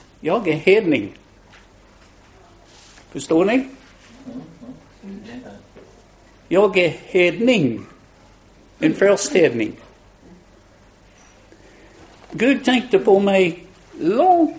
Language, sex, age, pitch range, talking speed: Spanish, male, 60-79, 155-225 Hz, 60 wpm